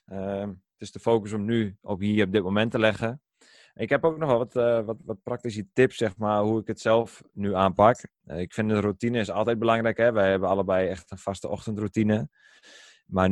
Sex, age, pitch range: male, 20-39, 100-115 Hz